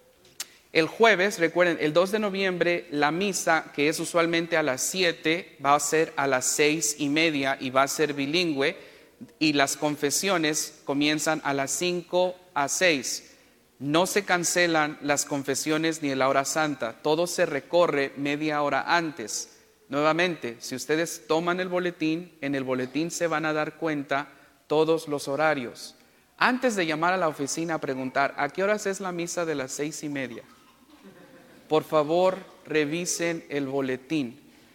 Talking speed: 160 wpm